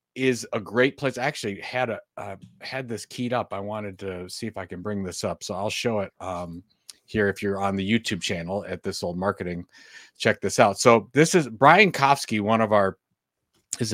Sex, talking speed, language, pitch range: male, 215 wpm, English, 100-125 Hz